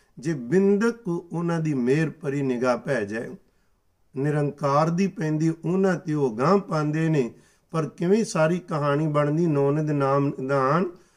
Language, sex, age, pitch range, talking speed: Punjabi, male, 50-69, 135-165 Hz, 145 wpm